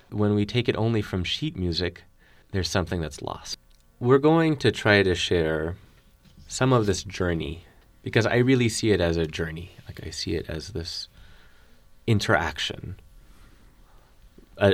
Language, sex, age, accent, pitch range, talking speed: English, male, 20-39, American, 90-120 Hz, 155 wpm